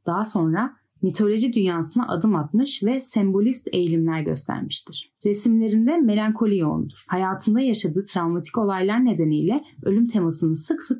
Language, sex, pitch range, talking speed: Turkish, female, 170-225 Hz, 120 wpm